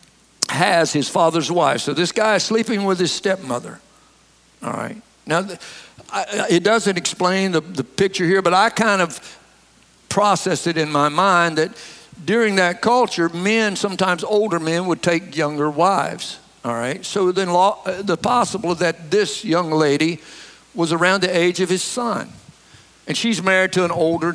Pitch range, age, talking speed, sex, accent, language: 170-225 Hz, 60-79, 165 wpm, male, American, English